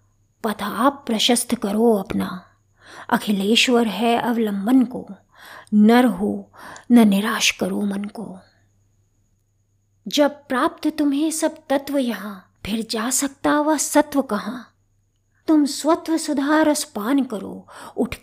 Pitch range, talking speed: 195-255 Hz, 110 wpm